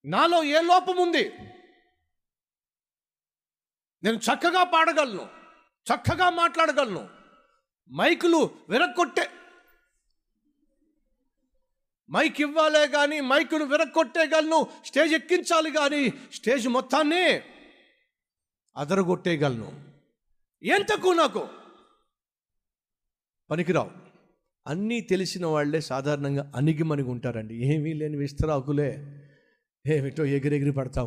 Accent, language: native, Telugu